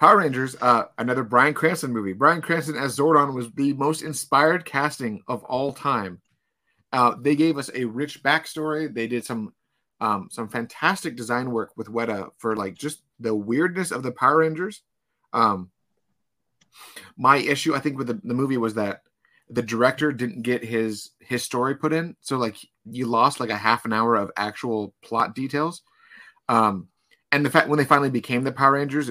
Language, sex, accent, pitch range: English, male, American, 115-150 Hz